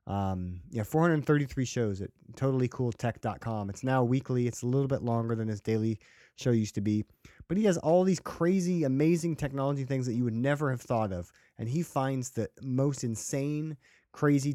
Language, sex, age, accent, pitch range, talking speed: English, male, 30-49, American, 105-135 Hz, 180 wpm